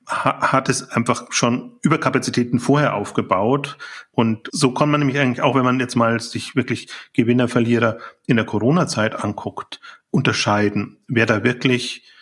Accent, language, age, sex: German, German, 30-49, male